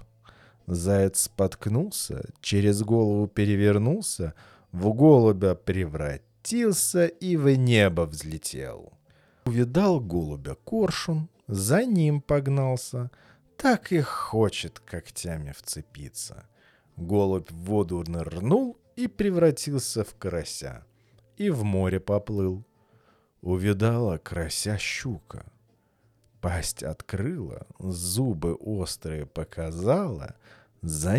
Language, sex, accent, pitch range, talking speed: Russian, male, native, 90-140 Hz, 85 wpm